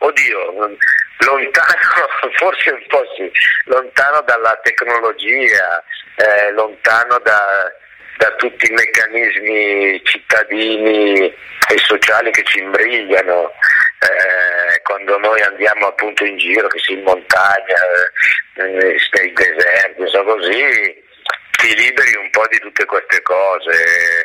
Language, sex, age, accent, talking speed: Italian, male, 50-69, native, 115 wpm